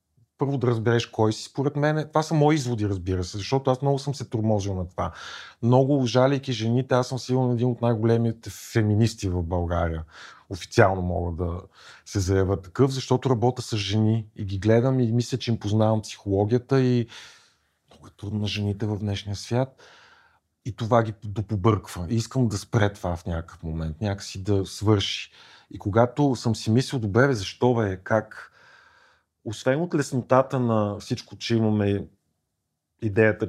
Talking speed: 165 wpm